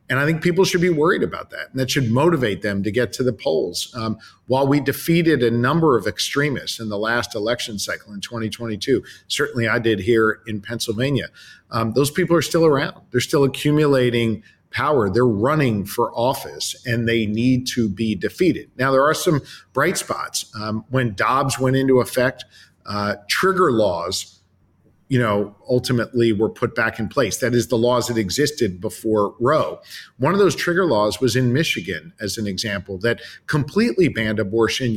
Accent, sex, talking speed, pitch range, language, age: American, male, 180 wpm, 110-145 Hz, English, 50-69